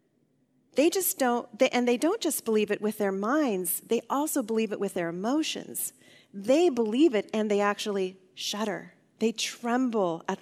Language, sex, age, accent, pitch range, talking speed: English, female, 40-59, American, 195-245 Hz, 165 wpm